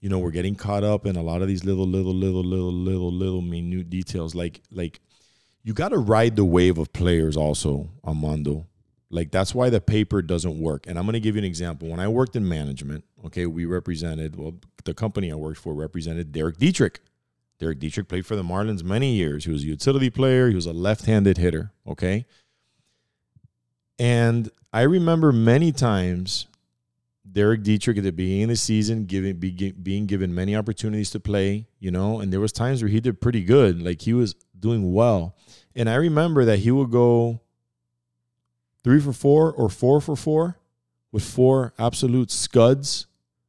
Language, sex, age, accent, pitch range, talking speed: English, male, 40-59, American, 90-115 Hz, 190 wpm